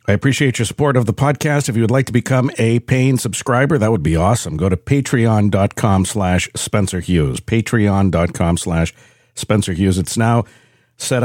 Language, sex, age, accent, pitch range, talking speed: English, male, 50-69, American, 90-115 Hz, 175 wpm